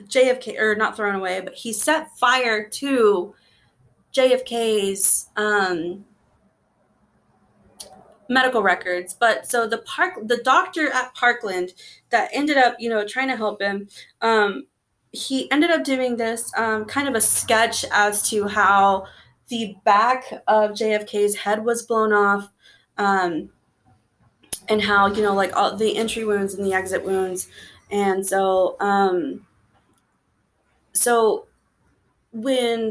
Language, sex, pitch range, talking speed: English, female, 200-240 Hz, 130 wpm